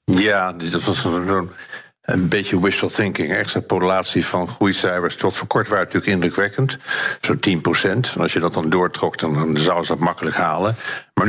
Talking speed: 180 wpm